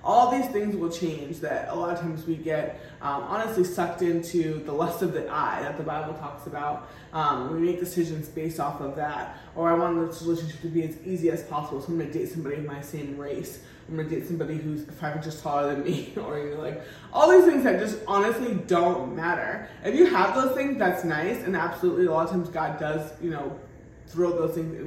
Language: English